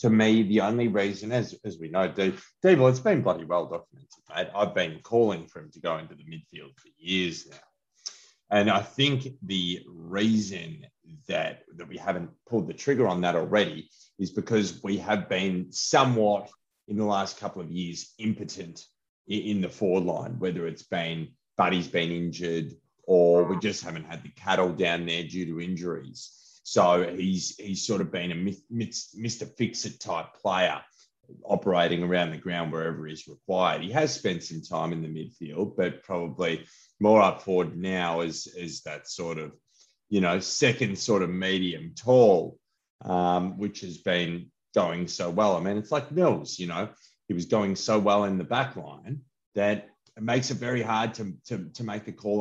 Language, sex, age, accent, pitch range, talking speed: English, male, 30-49, Australian, 85-110 Hz, 185 wpm